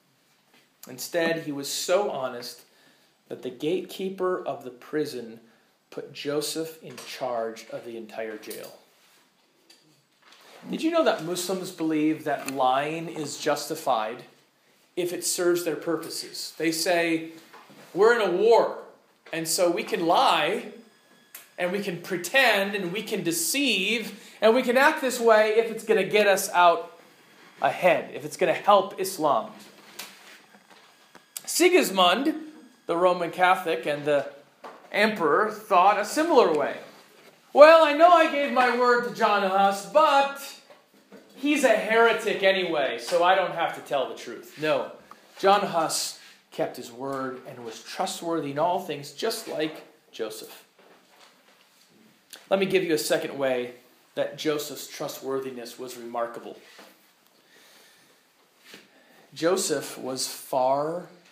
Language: English